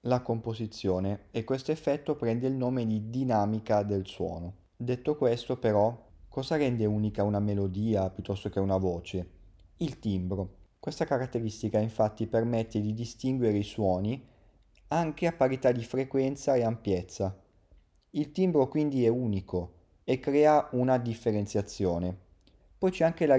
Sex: male